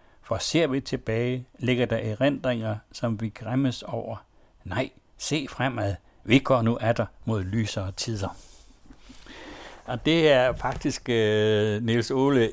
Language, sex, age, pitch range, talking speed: Danish, male, 60-79, 105-130 Hz, 130 wpm